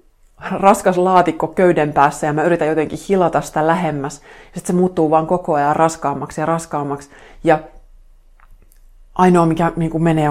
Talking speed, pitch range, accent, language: 145 wpm, 140-165 Hz, native, Finnish